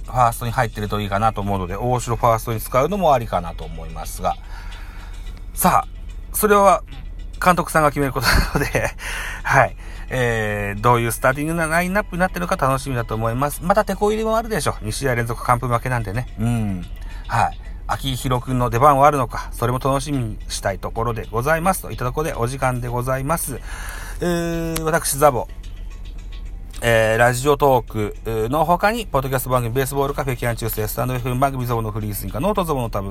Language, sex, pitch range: Japanese, male, 105-150 Hz